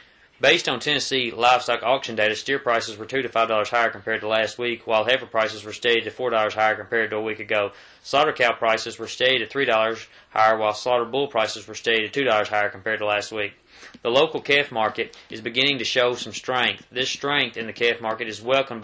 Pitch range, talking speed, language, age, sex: 110-130 Hz, 220 wpm, English, 20-39, male